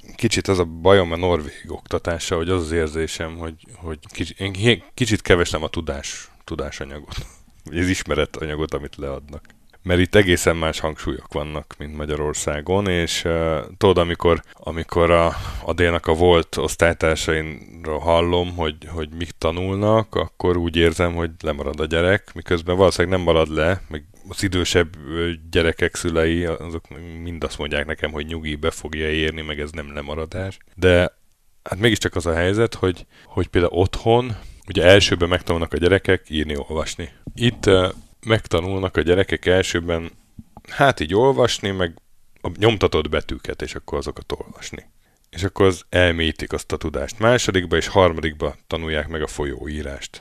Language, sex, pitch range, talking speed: Hungarian, male, 80-95 Hz, 150 wpm